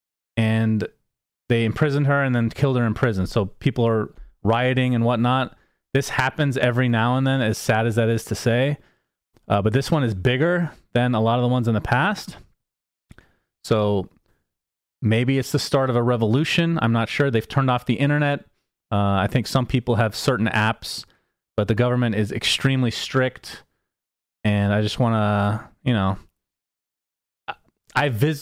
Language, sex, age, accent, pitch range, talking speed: English, male, 30-49, American, 105-130 Hz, 175 wpm